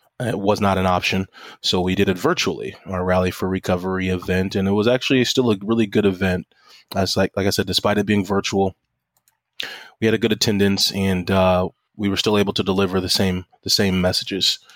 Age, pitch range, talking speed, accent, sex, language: 20-39, 95-110 Hz, 205 wpm, American, male, English